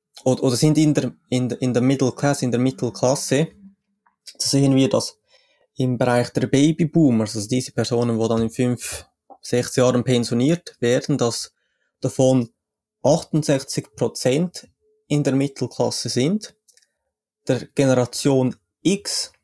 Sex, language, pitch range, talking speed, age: male, German, 120-150 Hz, 120 wpm, 20-39